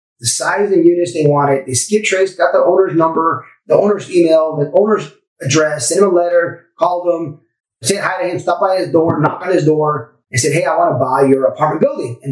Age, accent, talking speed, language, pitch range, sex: 30-49, American, 240 wpm, English, 145-200 Hz, male